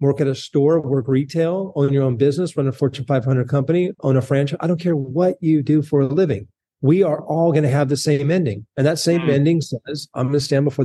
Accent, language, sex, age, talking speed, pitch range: American, English, male, 40-59, 255 wpm, 130-165 Hz